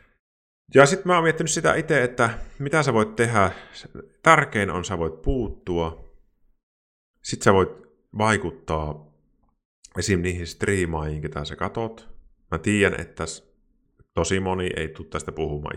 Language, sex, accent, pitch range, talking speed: Finnish, male, native, 75-105 Hz, 135 wpm